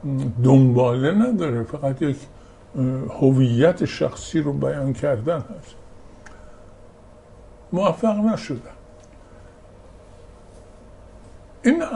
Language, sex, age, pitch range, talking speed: Persian, male, 60-79, 115-145 Hz, 65 wpm